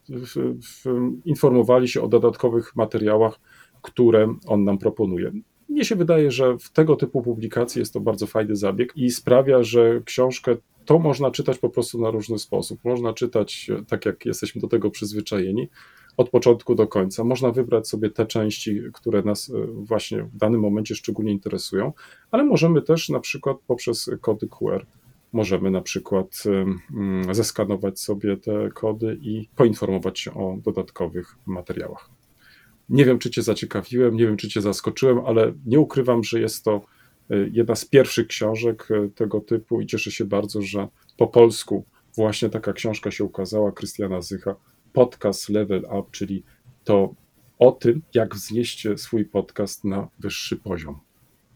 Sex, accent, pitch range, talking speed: male, native, 105-125 Hz, 150 wpm